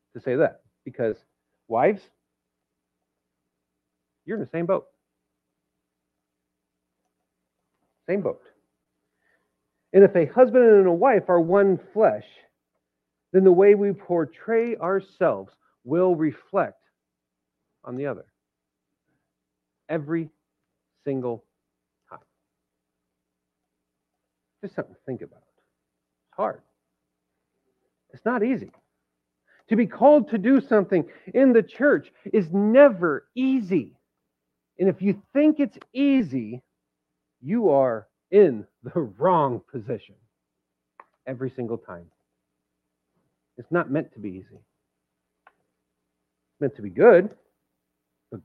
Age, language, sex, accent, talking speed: 50-69, English, male, American, 105 wpm